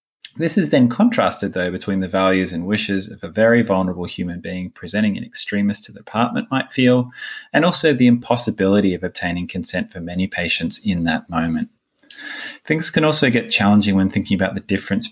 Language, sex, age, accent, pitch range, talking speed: English, male, 20-39, Australian, 90-120 Hz, 185 wpm